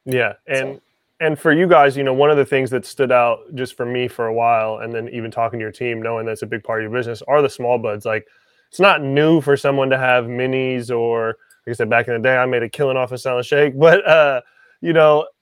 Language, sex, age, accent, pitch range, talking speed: English, male, 20-39, American, 115-135 Hz, 270 wpm